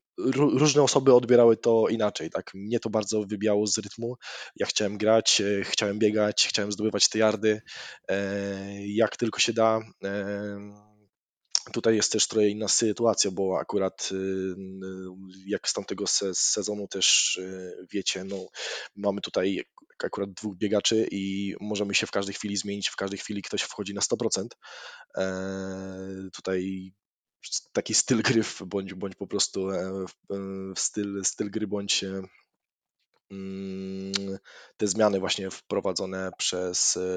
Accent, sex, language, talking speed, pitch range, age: native, male, Polish, 125 wpm, 95-110 Hz, 20-39